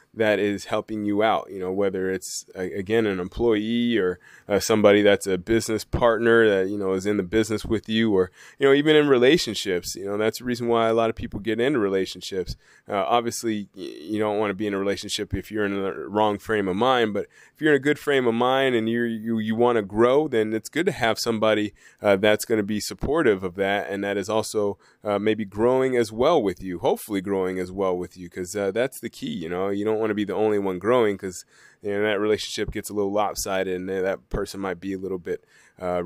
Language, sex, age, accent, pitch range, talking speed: English, male, 20-39, American, 100-120 Hz, 245 wpm